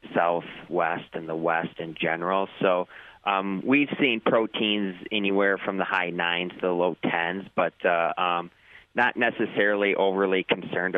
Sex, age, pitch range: male, 30-49, 85-100 Hz